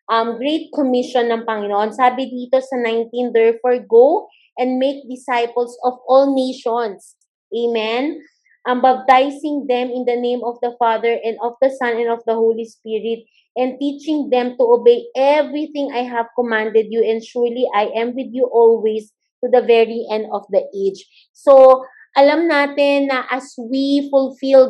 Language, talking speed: Filipino, 165 wpm